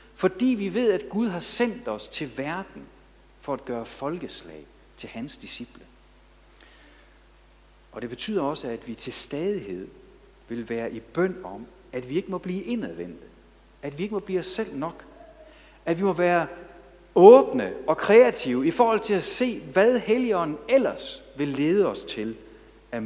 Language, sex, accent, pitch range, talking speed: Danish, male, native, 130-200 Hz, 165 wpm